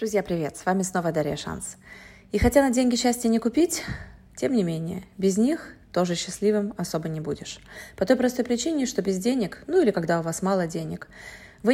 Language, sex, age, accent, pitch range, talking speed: Russian, female, 20-39, native, 180-235 Hz, 200 wpm